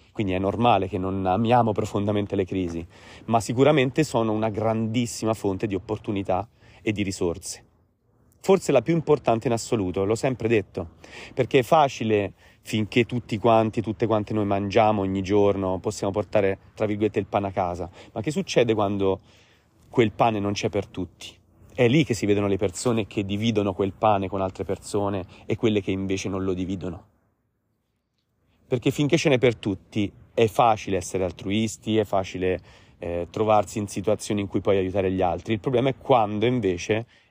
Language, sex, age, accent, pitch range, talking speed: Italian, male, 30-49, native, 95-120 Hz, 170 wpm